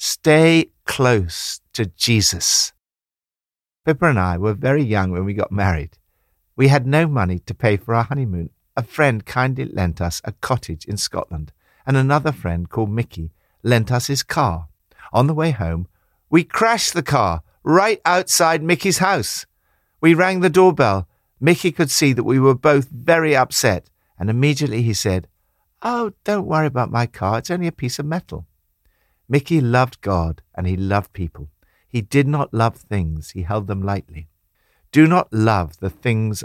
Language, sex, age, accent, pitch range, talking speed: English, male, 50-69, British, 90-140 Hz, 170 wpm